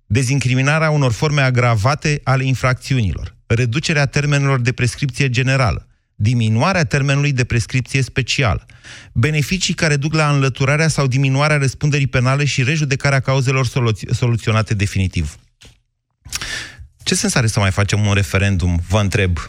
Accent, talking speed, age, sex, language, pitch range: native, 125 wpm, 30-49, male, Romanian, 115-155 Hz